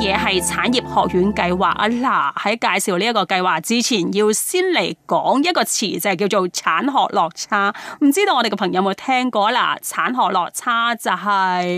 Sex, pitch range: female, 190-260 Hz